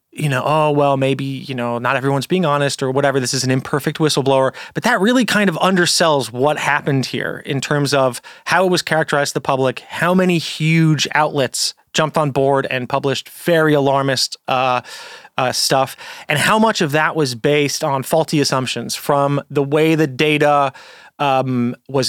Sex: male